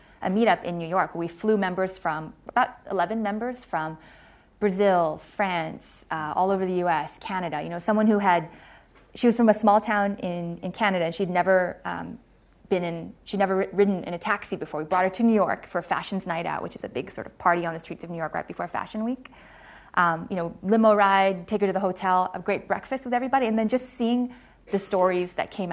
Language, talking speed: English, 230 wpm